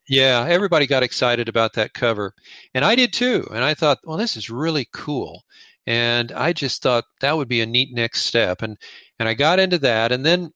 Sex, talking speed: male, 215 wpm